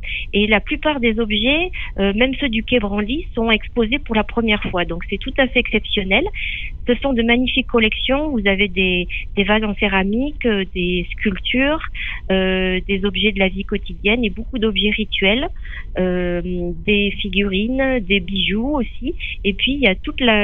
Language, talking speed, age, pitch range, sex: French, 180 wpm, 40-59, 190-235 Hz, female